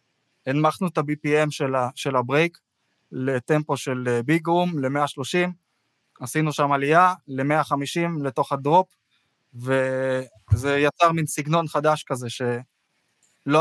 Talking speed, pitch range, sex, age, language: 105 wpm, 135-165 Hz, male, 20-39, Hebrew